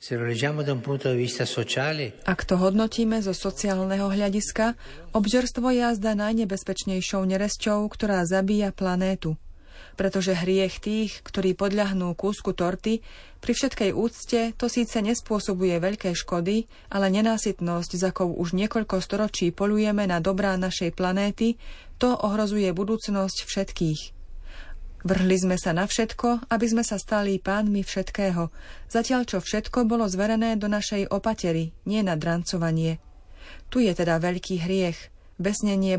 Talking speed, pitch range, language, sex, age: 120 wpm, 180-215 Hz, Slovak, female, 30-49